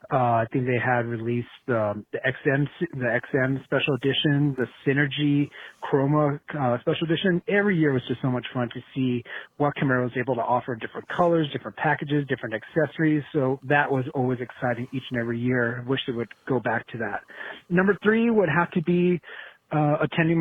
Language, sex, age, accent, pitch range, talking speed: English, male, 30-49, American, 125-150 Hz, 190 wpm